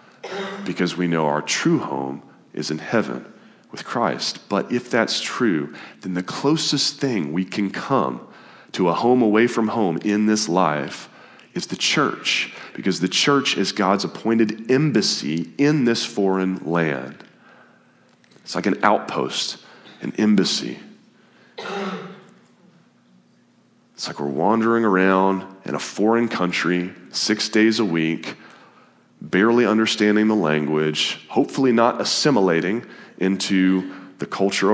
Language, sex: English, male